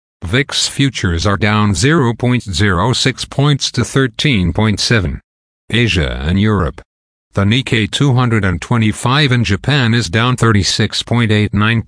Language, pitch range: English, 100-125 Hz